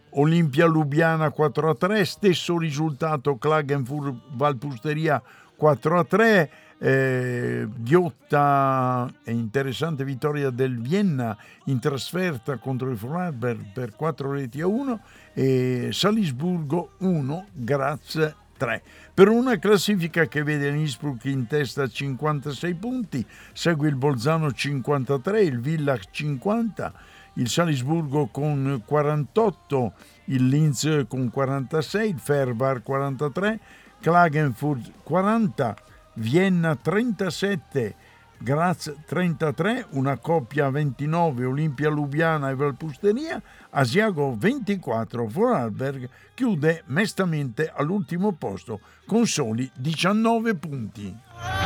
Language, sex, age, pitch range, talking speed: Italian, male, 60-79, 135-170 Hz, 100 wpm